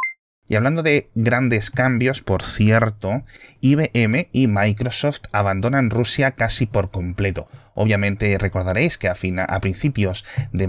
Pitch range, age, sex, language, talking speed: 95-115 Hz, 30-49, male, Spanish, 130 wpm